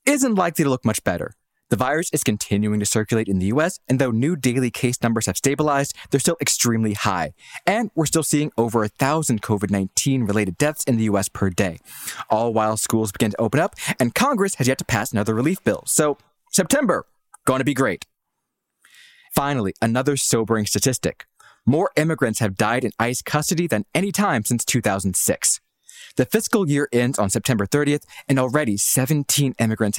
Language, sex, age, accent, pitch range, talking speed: English, male, 20-39, American, 105-145 Hz, 180 wpm